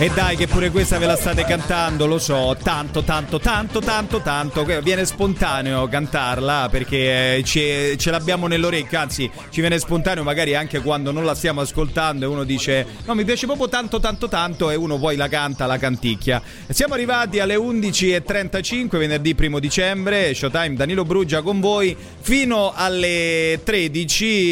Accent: native